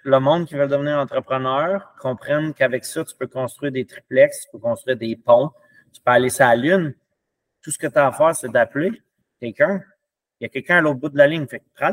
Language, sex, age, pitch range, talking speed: English, male, 30-49, 130-165 Hz, 235 wpm